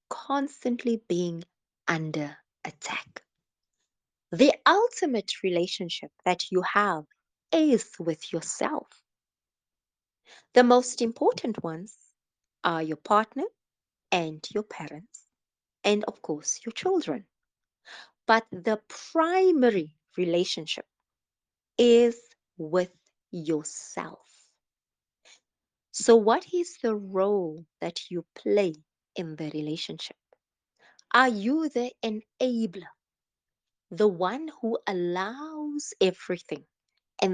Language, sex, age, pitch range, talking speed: English, female, 30-49, 175-255 Hz, 90 wpm